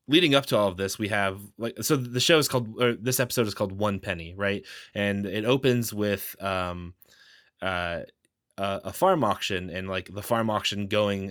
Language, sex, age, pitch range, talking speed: English, male, 20-39, 95-115 Hz, 190 wpm